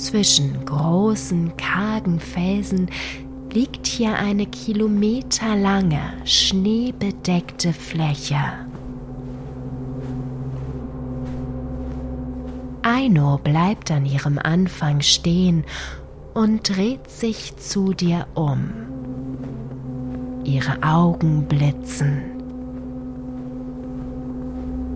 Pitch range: 130-180 Hz